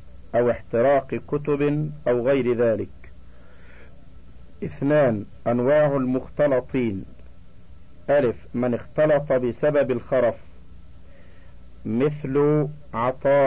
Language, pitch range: Arabic, 85-140 Hz